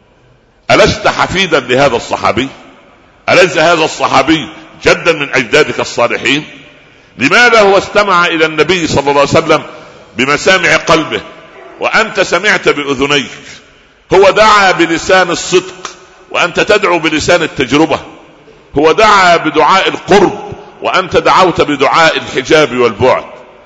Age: 60-79